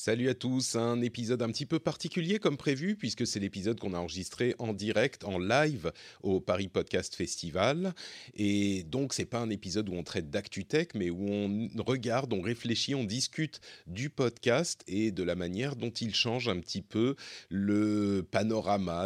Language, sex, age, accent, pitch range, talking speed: French, male, 40-59, French, 90-120 Hz, 180 wpm